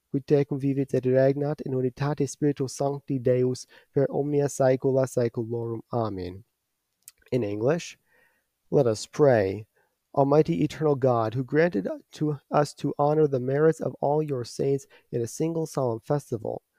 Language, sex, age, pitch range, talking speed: English, male, 30-49, 120-145 Hz, 135 wpm